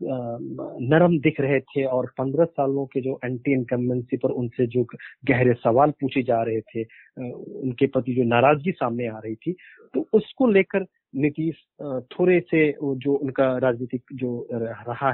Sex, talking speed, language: male, 150 wpm, Hindi